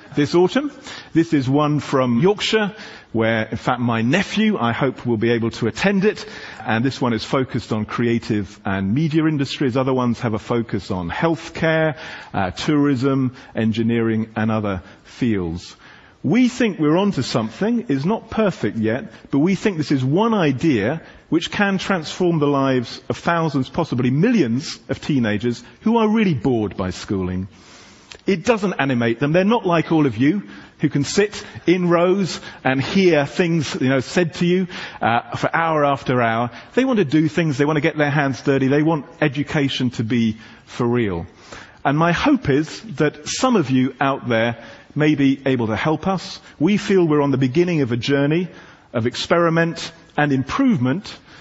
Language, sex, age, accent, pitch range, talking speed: English, male, 40-59, British, 120-175 Hz, 175 wpm